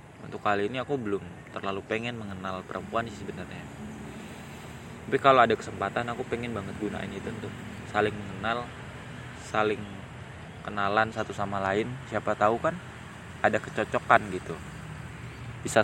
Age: 20-39